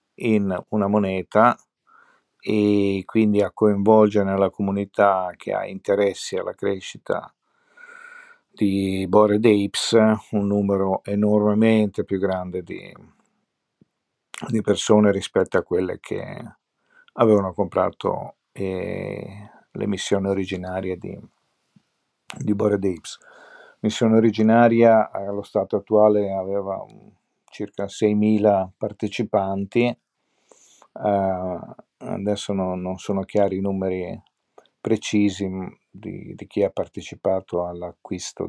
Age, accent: 50-69, native